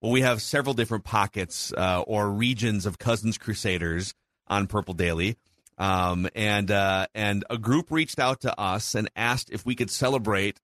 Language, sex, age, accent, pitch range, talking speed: English, male, 40-59, American, 100-130 Hz, 175 wpm